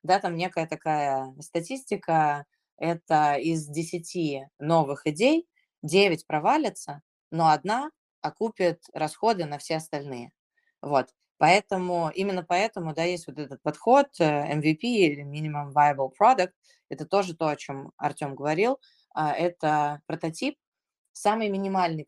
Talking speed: 120 wpm